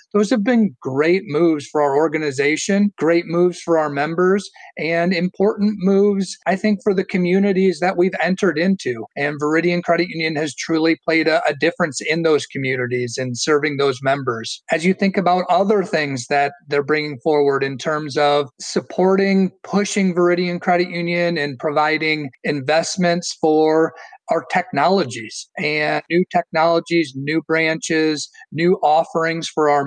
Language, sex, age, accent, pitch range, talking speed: English, male, 40-59, American, 145-180 Hz, 150 wpm